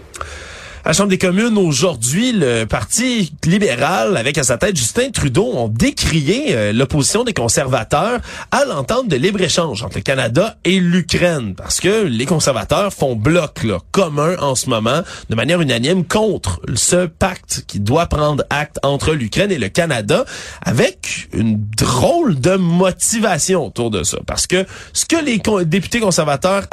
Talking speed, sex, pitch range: 160 wpm, male, 130-195 Hz